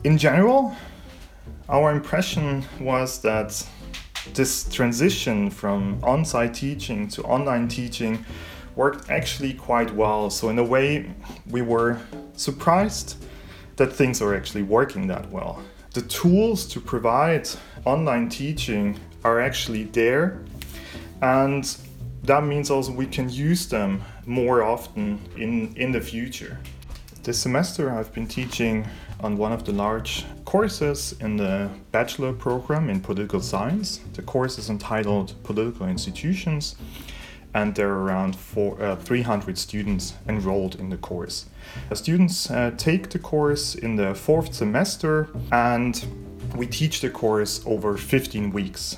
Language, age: Danish, 30-49